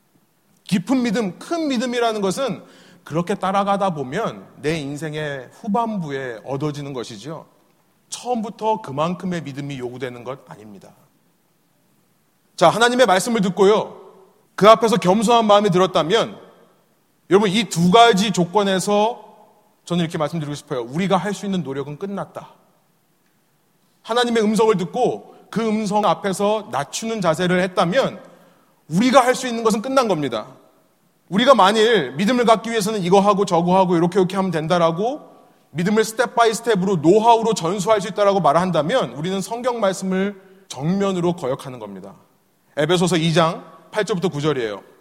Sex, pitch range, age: male, 175-220 Hz, 30-49